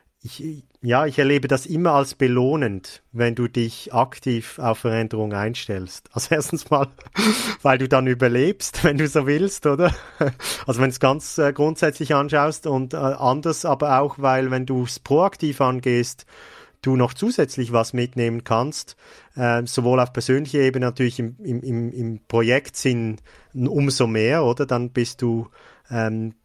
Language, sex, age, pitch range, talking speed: German, male, 40-59, 120-145 Hz, 150 wpm